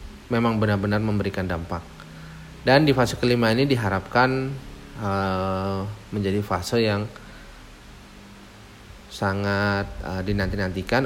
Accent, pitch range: native, 95-120 Hz